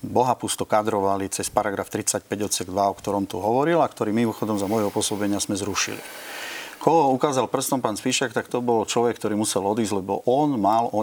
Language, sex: Slovak, male